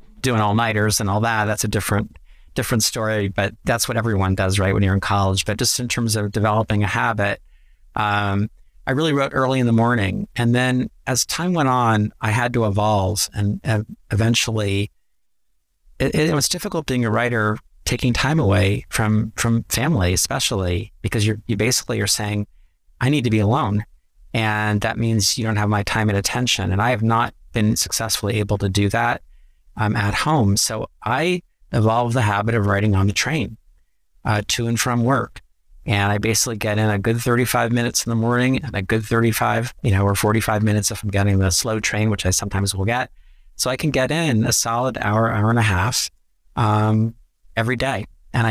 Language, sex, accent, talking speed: English, male, American, 200 wpm